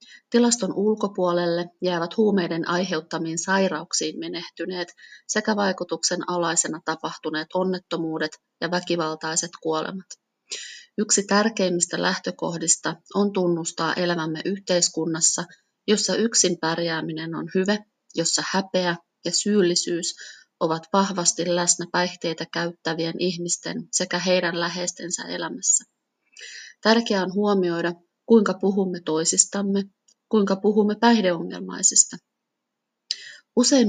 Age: 30-49